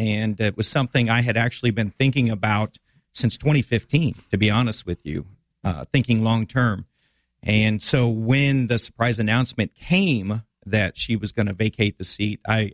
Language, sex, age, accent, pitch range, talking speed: English, male, 40-59, American, 100-125 Hz, 175 wpm